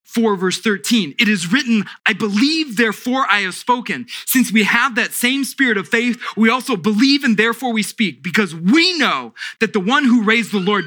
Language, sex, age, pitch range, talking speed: English, male, 20-39, 190-235 Hz, 205 wpm